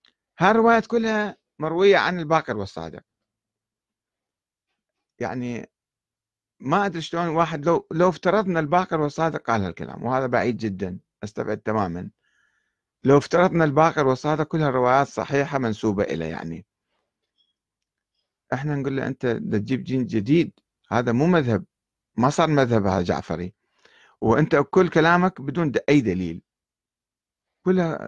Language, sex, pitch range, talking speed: Arabic, male, 115-170 Hz, 120 wpm